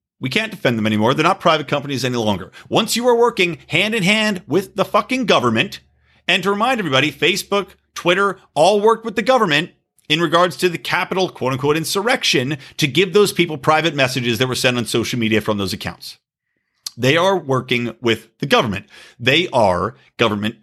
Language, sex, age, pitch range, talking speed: English, male, 40-59, 120-200 Hz, 190 wpm